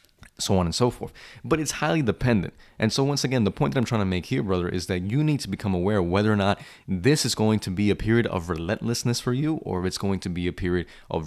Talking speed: 280 wpm